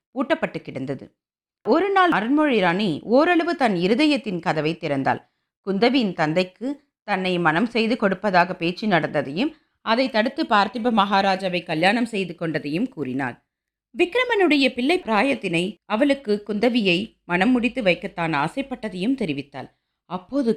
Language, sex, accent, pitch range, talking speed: Tamil, female, native, 175-265 Hz, 105 wpm